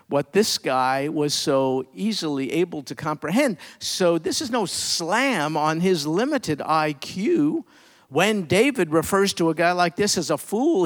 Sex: male